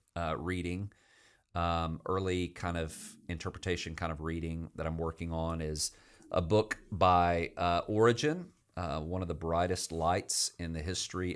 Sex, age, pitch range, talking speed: male, 40-59, 80-95 Hz, 155 wpm